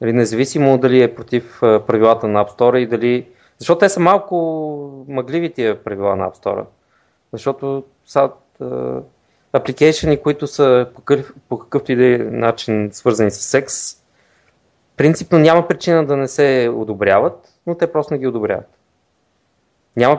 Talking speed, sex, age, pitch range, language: 135 wpm, male, 20-39, 110-140 Hz, Bulgarian